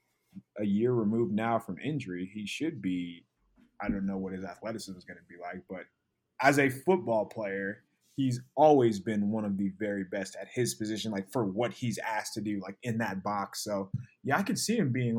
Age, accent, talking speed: 20-39, American, 215 wpm